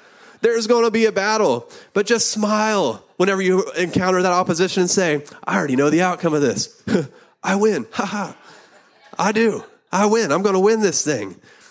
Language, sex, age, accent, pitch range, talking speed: English, male, 30-49, American, 120-180 Hz, 190 wpm